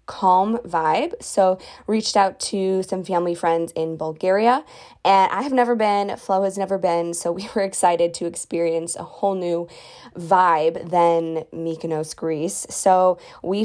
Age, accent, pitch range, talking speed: 20-39, American, 170-205 Hz, 155 wpm